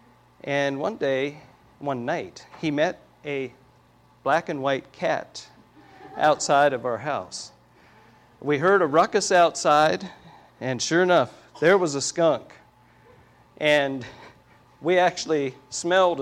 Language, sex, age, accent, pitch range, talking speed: English, male, 50-69, American, 130-170 Hz, 120 wpm